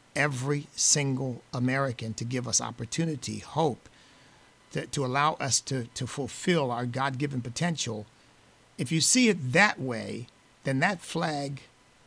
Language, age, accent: English, 50-69, American